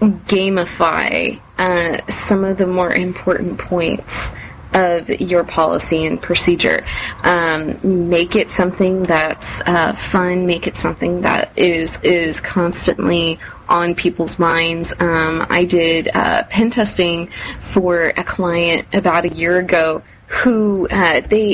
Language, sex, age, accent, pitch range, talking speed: English, female, 30-49, American, 165-215 Hz, 130 wpm